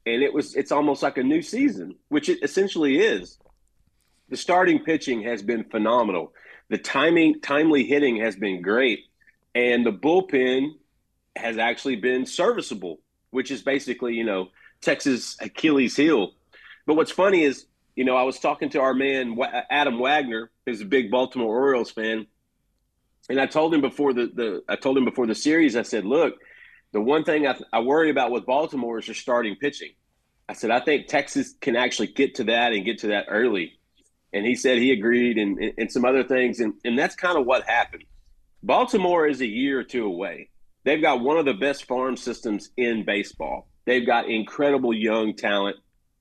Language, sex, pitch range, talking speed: English, male, 115-140 Hz, 185 wpm